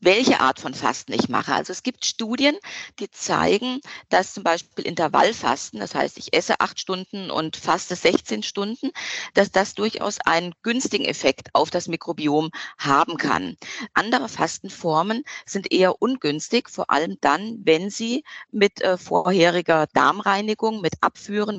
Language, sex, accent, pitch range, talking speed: German, female, German, 170-225 Hz, 145 wpm